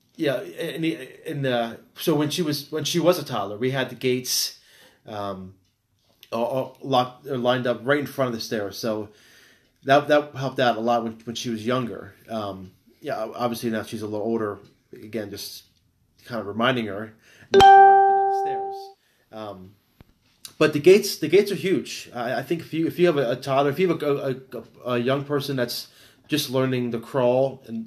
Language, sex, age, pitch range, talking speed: English, male, 30-49, 110-135 Hz, 200 wpm